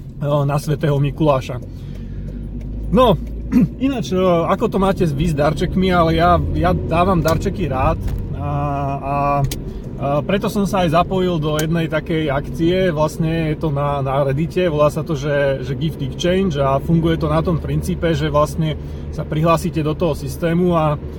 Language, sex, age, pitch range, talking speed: Slovak, male, 30-49, 140-165 Hz, 155 wpm